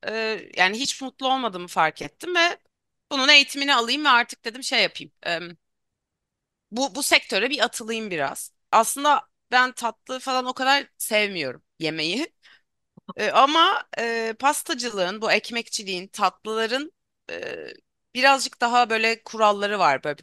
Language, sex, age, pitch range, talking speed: Turkish, female, 30-49, 185-255 Hz, 120 wpm